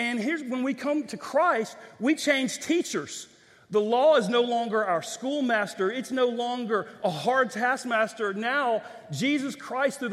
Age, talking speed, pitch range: 40-59, 160 wpm, 215-260 Hz